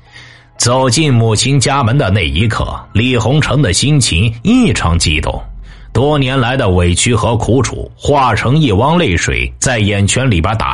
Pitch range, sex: 100-135 Hz, male